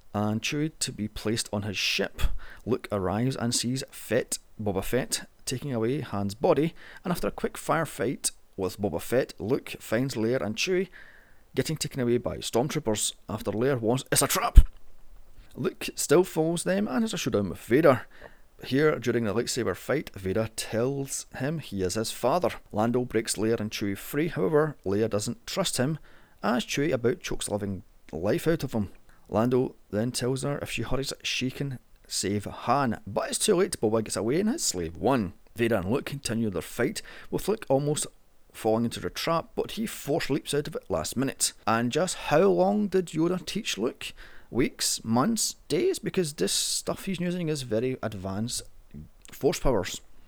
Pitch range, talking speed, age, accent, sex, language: 105-150 Hz, 180 wpm, 30-49, British, male, English